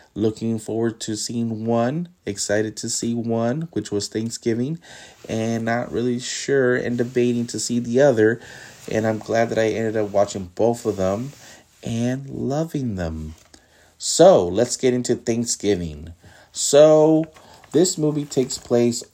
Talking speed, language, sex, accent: 145 wpm, English, male, American